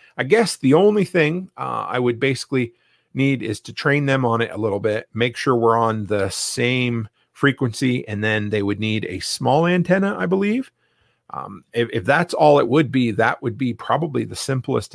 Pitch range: 105-135 Hz